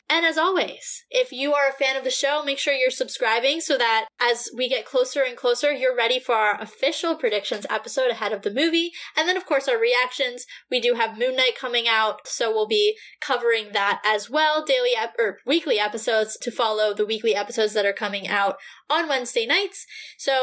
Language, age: English, 10-29